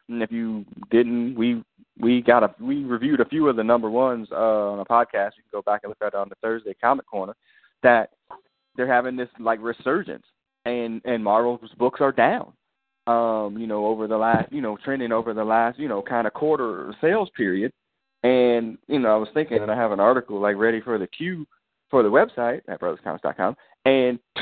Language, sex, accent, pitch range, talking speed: English, male, American, 115-135 Hz, 210 wpm